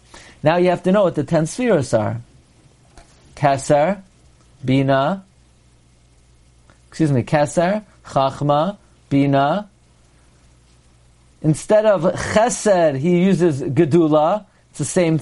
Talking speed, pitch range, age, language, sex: 105 wpm, 140-205 Hz, 40-59, English, male